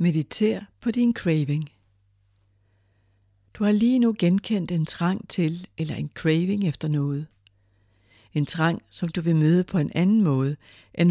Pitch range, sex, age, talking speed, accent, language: 135-190 Hz, female, 60-79, 150 wpm, native, Danish